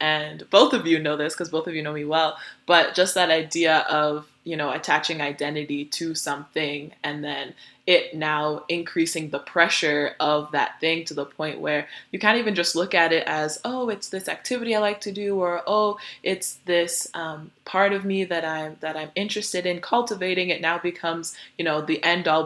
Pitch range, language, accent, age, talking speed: 155-180 Hz, English, American, 20-39, 200 wpm